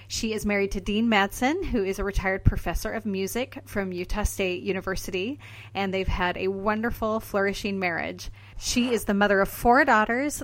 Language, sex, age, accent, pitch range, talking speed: English, female, 30-49, American, 180-225 Hz, 180 wpm